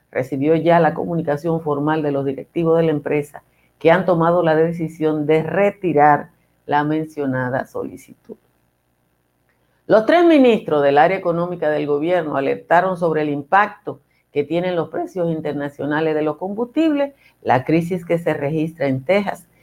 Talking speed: 145 wpm